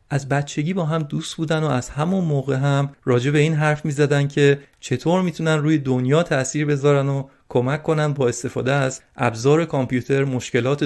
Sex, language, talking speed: male, Persian, 175 wpm